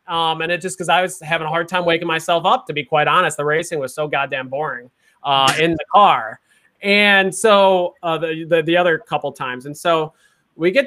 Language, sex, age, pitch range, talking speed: English, male, 30-49, 140-175 Hz, 225 wpm